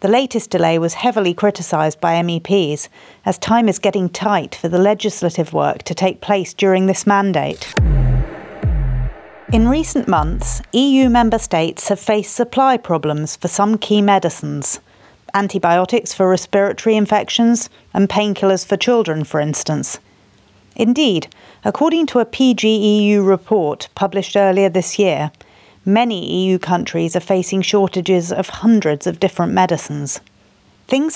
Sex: female